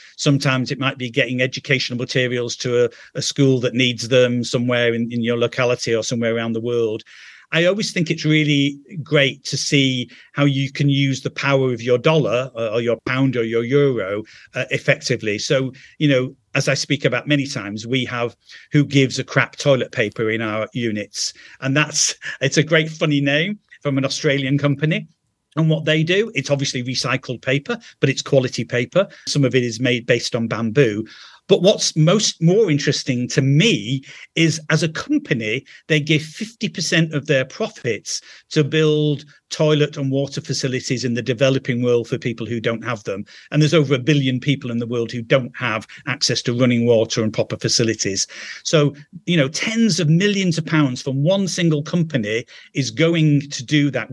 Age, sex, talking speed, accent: 50-69, male, 185 wpm, British